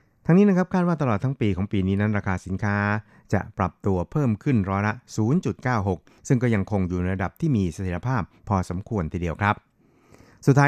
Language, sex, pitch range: Thai, male, 90-115 Hz